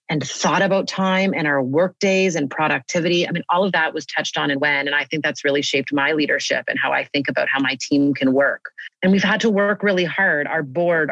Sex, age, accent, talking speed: female, 30-49, American, 255 wpm